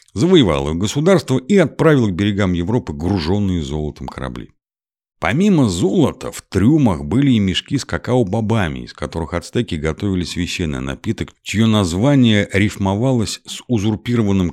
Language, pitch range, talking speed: Russian, 85-120 Hz, 130 wpm